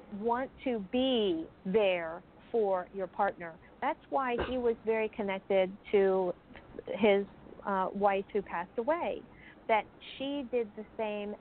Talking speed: 130 wpm